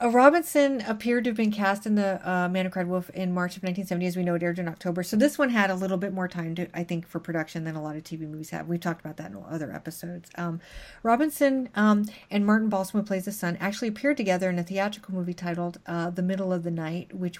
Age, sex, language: 30-49, female, English